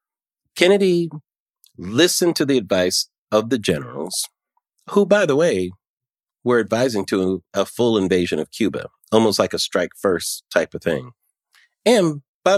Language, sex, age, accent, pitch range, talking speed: English, male, 40-59, American, 95-135 Hz, 145 wpm